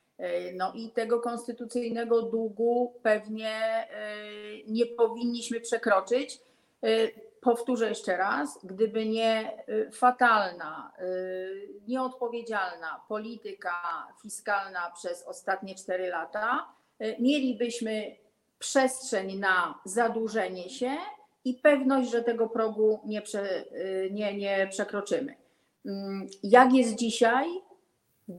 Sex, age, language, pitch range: female, 40-59, Polish, 200-240 Hz